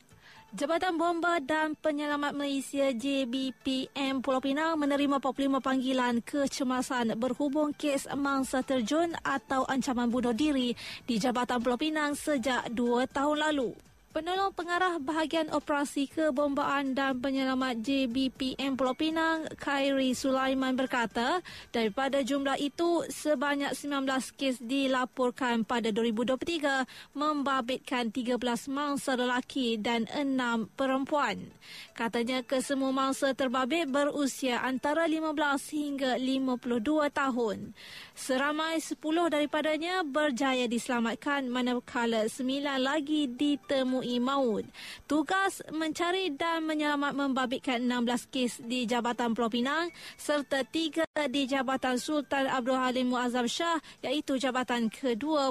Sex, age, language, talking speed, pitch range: female, 20-39, Malay, 110 wpm, 255-295 Hz